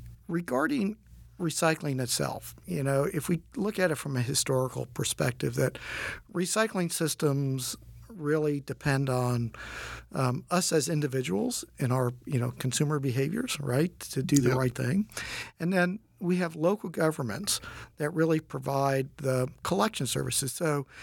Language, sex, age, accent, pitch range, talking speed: English, male, 50-69, American, 125-155 Hz, 140 wpm